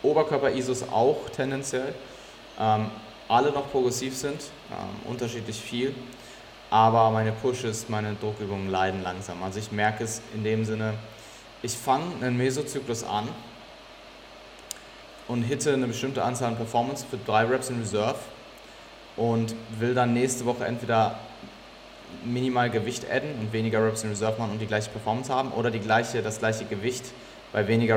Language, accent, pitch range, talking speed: German, German, 105-125 Hz, 150 wpm